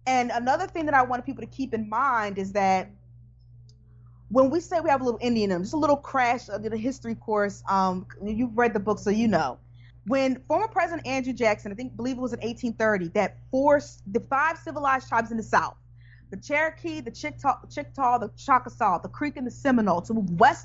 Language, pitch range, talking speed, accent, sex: English, 200-285 Hz, 220 wpm, American, female